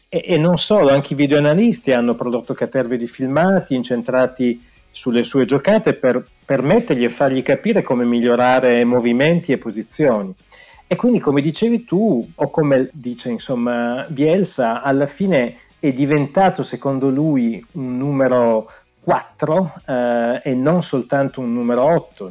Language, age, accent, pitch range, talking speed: Italian, 40-59, native, 120-155 Hz, 135 wpm